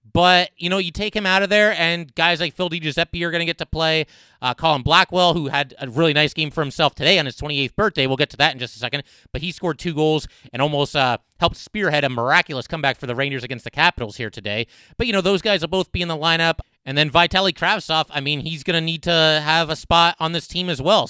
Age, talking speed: 30-49, 270 wpm